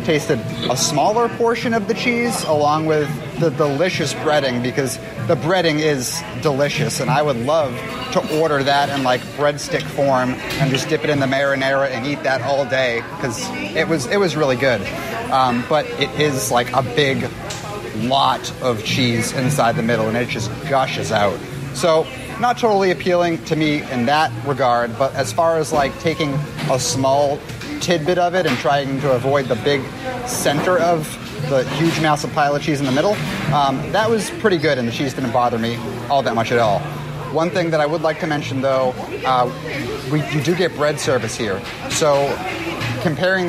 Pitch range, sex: 130-160 Hz, male